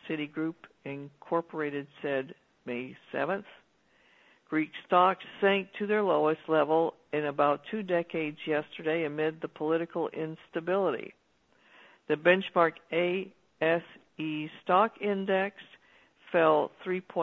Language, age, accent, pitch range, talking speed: English, 60-79, American, 160-200 Hz, 100 wpm